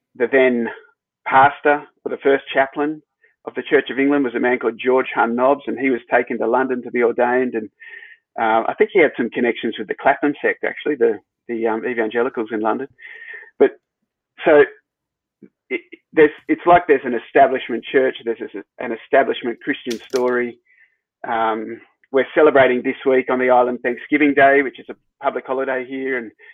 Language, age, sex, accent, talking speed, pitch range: English, 30-49, male, Australian, 180 wpm, 120-150 Hz